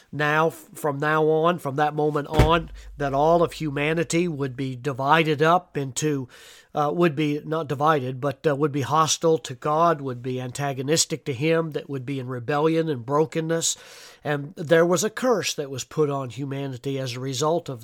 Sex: male